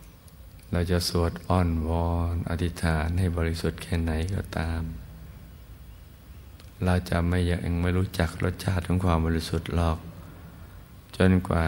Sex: male